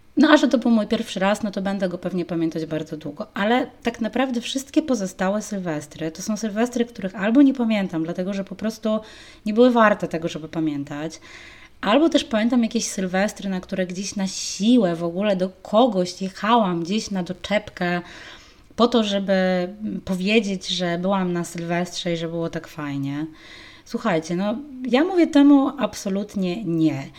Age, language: 20-39, Polish